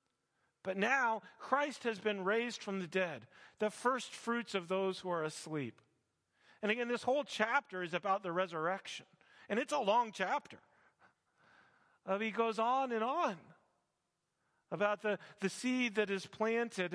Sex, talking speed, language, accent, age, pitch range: male, 155 wpm, English, American, 40-59, 165-210 Hz